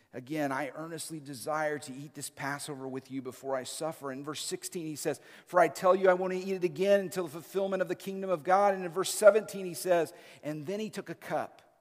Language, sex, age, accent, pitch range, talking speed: English, male, 50-69, American, 140-170 Hz, 240 wpm